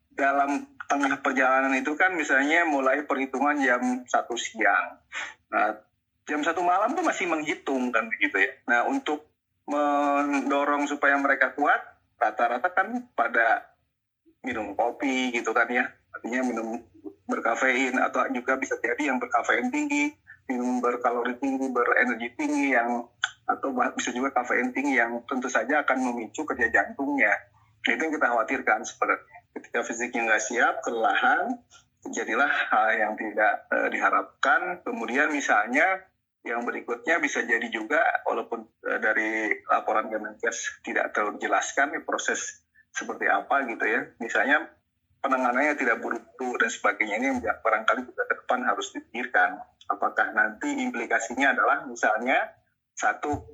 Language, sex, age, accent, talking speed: Indonesian, male, 30-49, native, 130 wpm